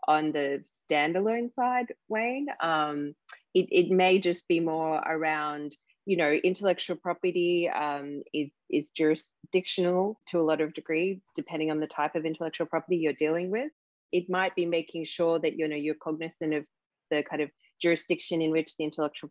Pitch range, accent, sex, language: 150-185 Hz, Australian, female, English